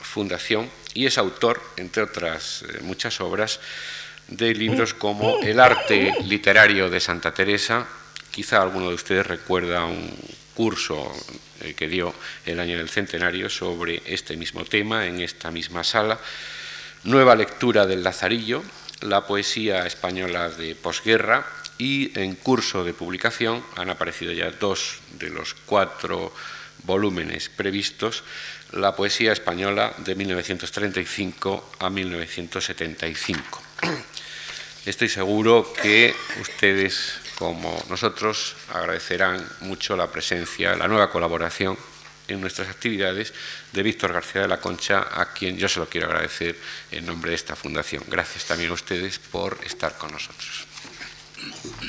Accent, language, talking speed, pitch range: Spanish, Spanish, 125 wpm, 85-110 Hz